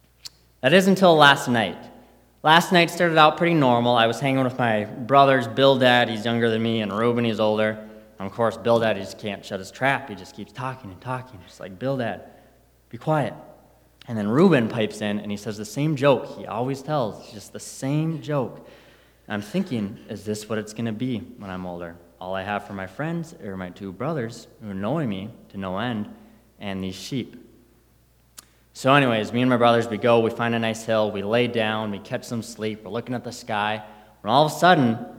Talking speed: 220 wpm